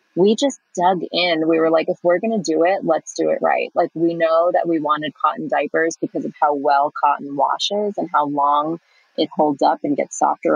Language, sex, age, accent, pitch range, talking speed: English, female, 30-49, American, 150-180 Hz, 225 wpm